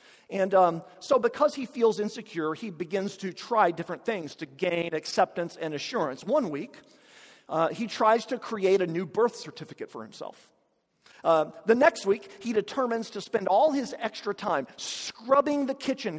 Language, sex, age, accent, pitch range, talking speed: English, male, 50-69, American, 180-275 Hz, 170 wpm